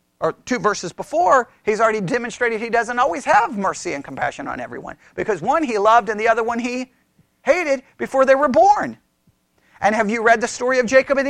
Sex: male